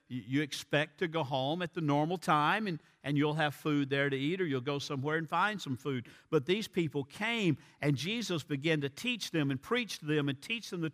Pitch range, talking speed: 130-160 Hz, 235 wpm